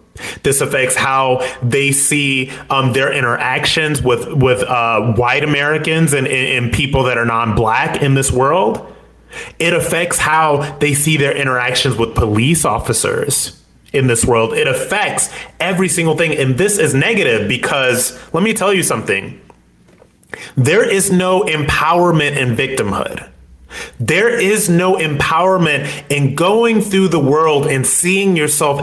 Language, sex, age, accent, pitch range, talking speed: English, male, 30-49, American, 130-175 Hz, 140 wpm